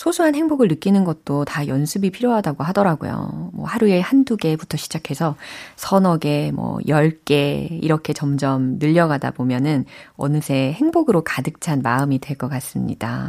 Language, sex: Korean, female